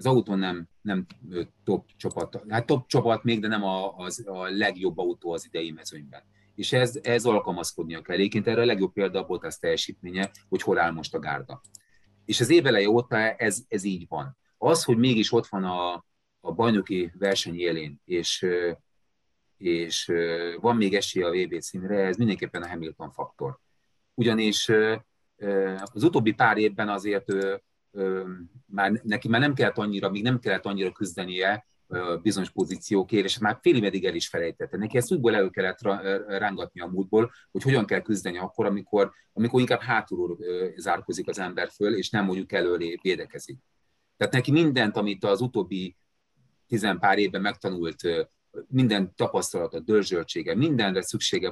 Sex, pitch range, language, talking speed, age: male, 95-115 Hz, Hungarian, 155 wpm, 30-49